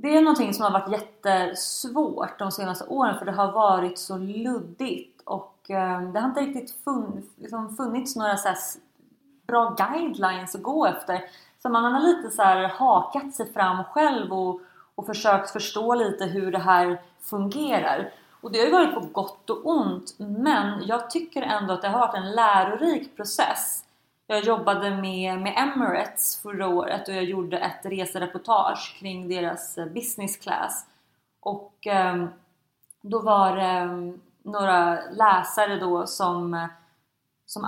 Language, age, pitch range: Swedish, 30-49, 180-225 Hz